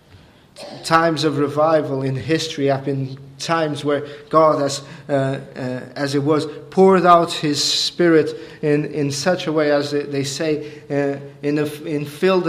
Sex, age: male, 40-59